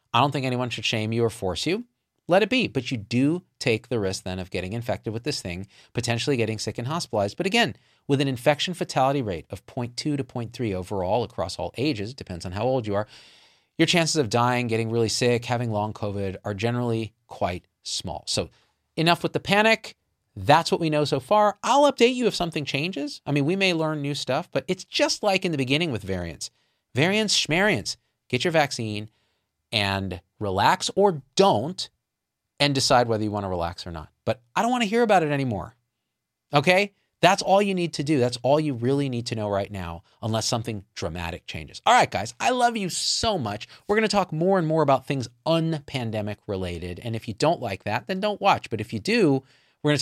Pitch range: 105-160 Hz